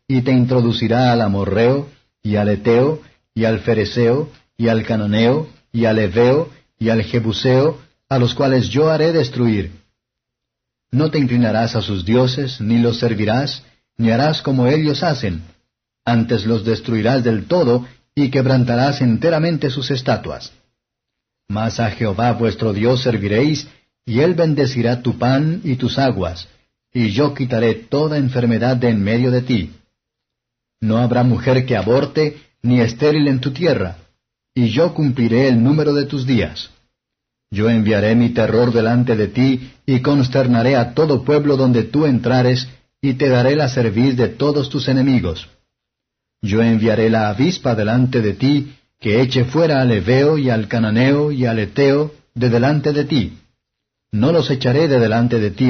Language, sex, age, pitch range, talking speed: Spanish, male, 50-69, 115-140 Hz, 155 wpm